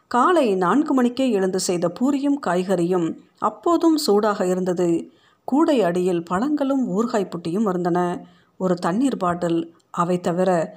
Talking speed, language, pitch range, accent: 110 wpm, Tamil, 175-225 Hz, native